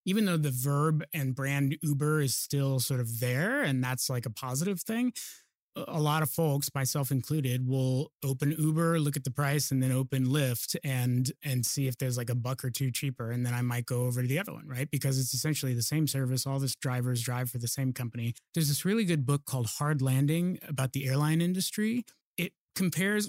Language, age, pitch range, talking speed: English, 30-49, 130-150 Hz, 220 wpm